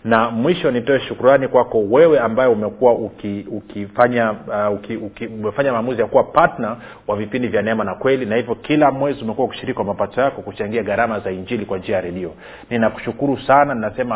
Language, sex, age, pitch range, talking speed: Swahili, male, 40-59, 105-135 Hz, 180 wpm